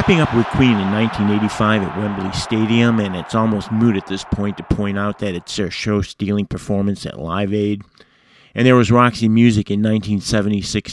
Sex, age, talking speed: male, 50-69, 185 wpm